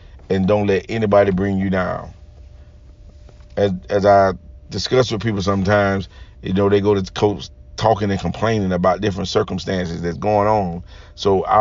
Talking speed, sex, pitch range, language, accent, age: 165 wpm, male, 95-110 Hz, English, American, 40-59